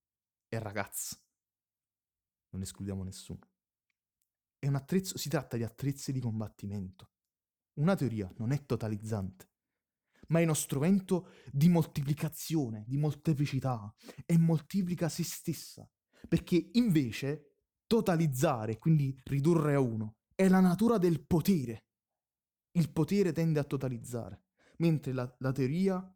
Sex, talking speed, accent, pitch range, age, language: male, 115 wpm, native, 105-150 Hz, 20-39, Italian